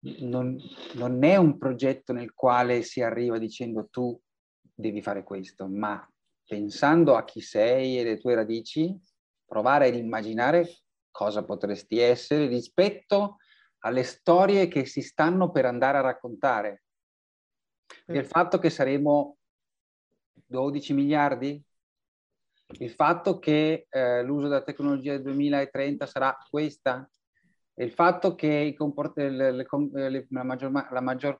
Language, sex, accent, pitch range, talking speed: Italian, male, native, 120-150 Hz, 130 wpm